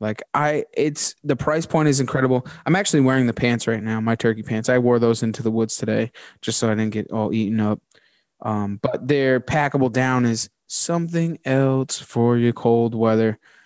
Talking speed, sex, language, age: 200 wpm, male, English, 20-39